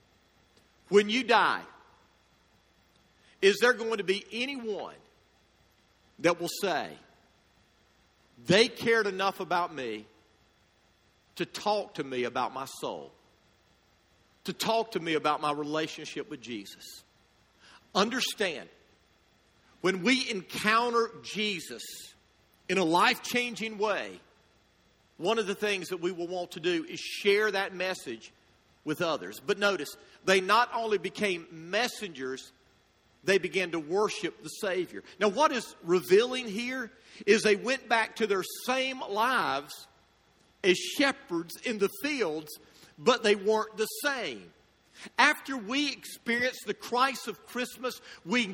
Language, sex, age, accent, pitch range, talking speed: English, male, 50-69, American, 175-245 Hz, 125 wpm